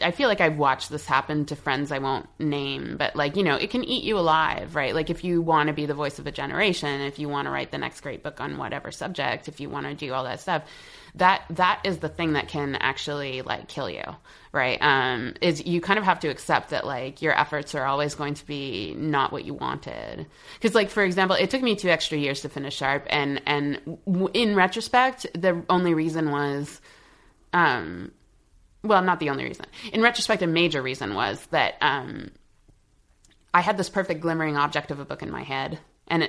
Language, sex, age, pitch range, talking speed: English, female, 20-39, 145-185 Hz, 220 wpm